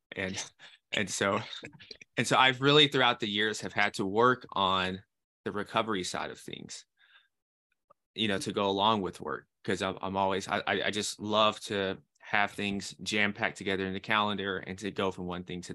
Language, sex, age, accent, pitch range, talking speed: English, male, 20-39, American, 95-110 Hz, 195 wpm